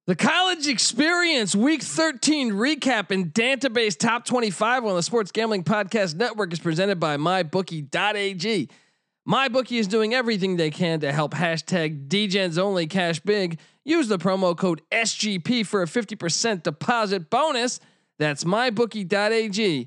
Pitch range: 175-245 Hz